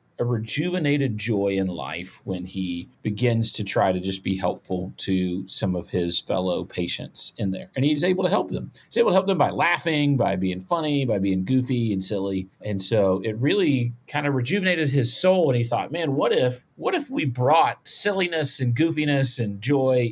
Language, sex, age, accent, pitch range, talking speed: English, male, 40-59, American, 95-130 Hz, 200 wpm